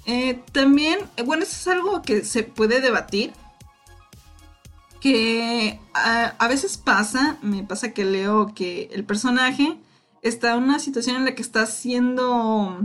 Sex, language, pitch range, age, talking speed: female, Spanish, 215-275 Hz, 20-39, 150 wpm